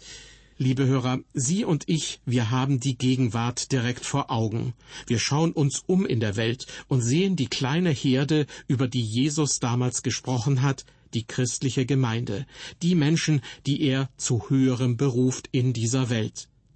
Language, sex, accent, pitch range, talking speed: German, male, German, 125-140 Hz, 155 wpm